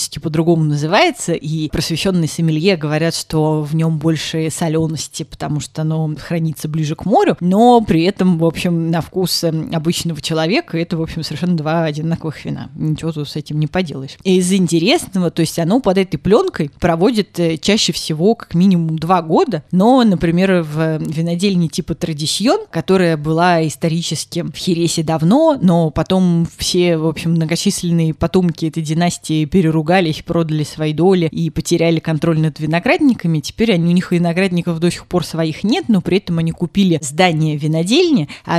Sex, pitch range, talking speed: female, 160-185 Hz, 160 wpm